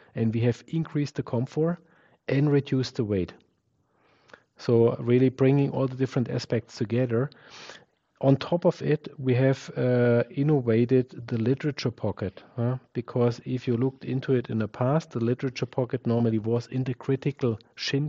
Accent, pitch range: German, 115-140 Hz